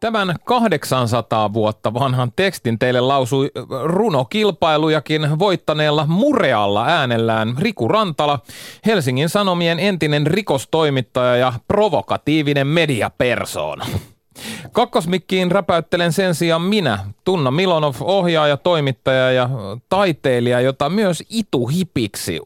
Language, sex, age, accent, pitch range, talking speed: Finnish, male, 30-49, native, 120-180 Hz, 90 wpm